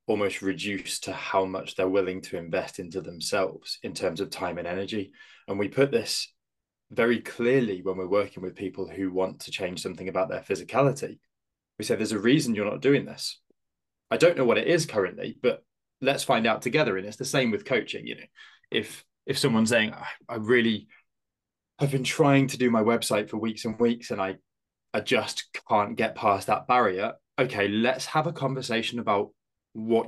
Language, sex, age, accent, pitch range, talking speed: English, male, 20-39, British, 100-135 Hz, 195 wpm